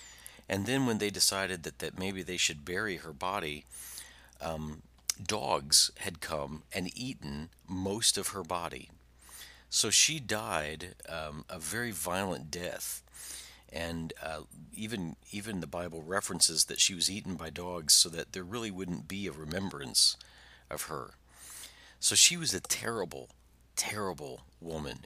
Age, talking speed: 50-69, 145 wpm